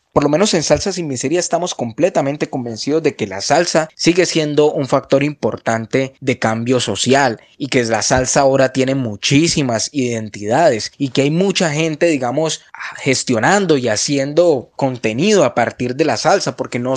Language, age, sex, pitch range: Spanish, 20-39, male, 130-160 Hz